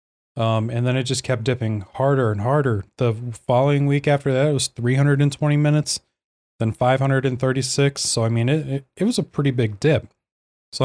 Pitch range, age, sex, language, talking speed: 120-150 Hz, 20-39, male, English, 175 wpm